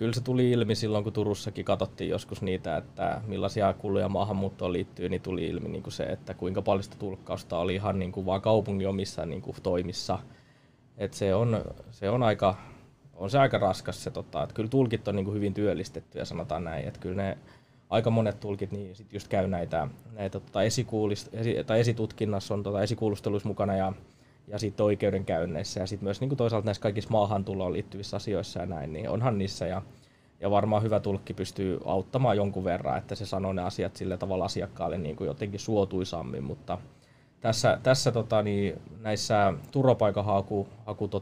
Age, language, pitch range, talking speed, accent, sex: 20-39, Finnish, 95-115 Hz, 160 wpm, native, male